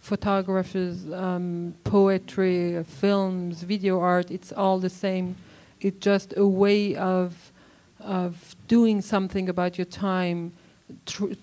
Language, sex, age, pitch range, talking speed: English, female, 40-59, 170-195 Hz, 115 wpm